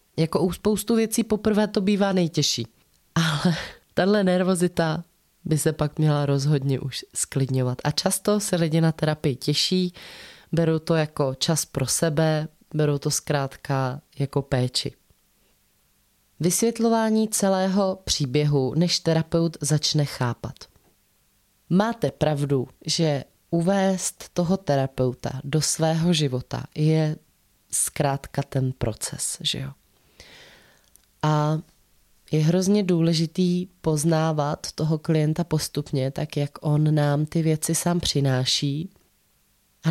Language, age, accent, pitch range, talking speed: Czech, 20-39, native, 145-175 Hz, 115 wpm